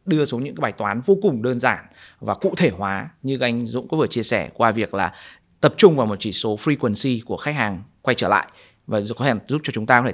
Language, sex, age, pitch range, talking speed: Vietnamese, male, 20-39, 115-150 Hz, 260 wpm